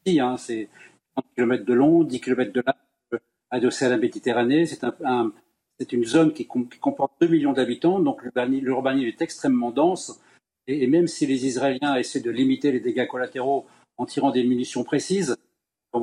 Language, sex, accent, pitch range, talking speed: French, male, French, 125-155 Hz, 190 wpm